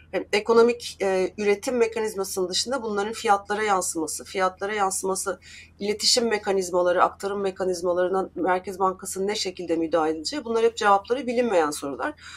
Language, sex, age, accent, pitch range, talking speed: Turkish, female, 30-49, native, 180-225 Hz, 120 wpm